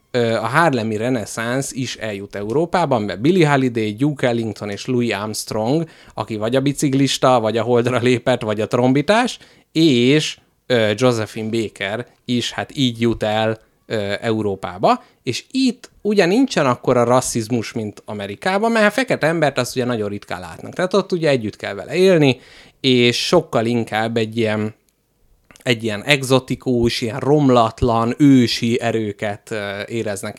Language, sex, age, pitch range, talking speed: Hungarian, male, 30-49, 110-140 Hz, 140 wpm